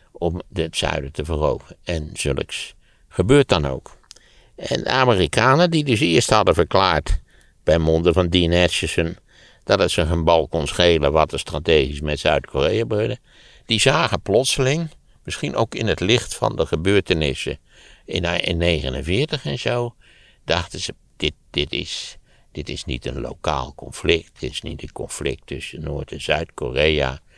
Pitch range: 75-100 Hz